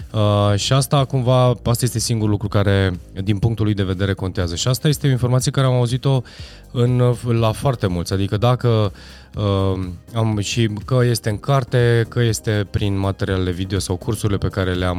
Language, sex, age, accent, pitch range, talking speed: Romanian, male, 20-39, native, 95-120 Hz, 185 wpm